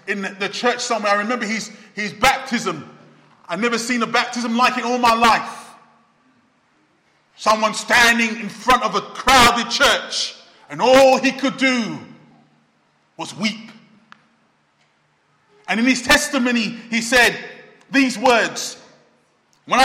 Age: 30-49